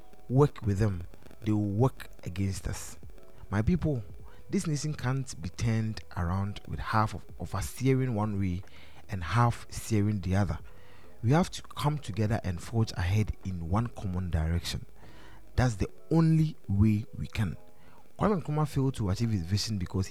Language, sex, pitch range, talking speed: English, male, 95-120 Hz, 165 wpm